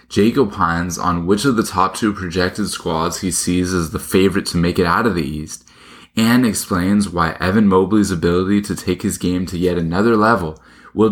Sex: male